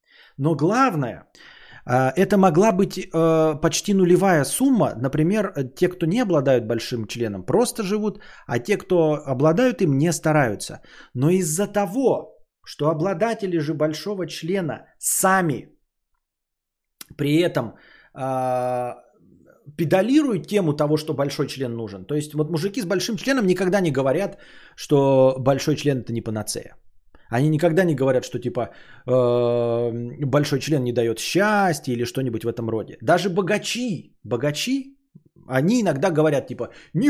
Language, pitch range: Bulgarian, 125-180 Hz